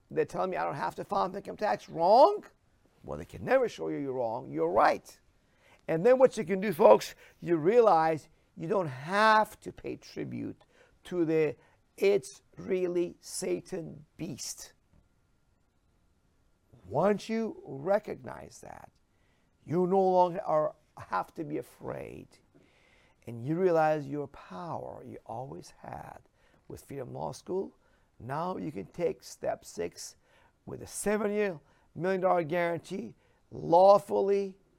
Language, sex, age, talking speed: English, male, 50-69, 135 wpm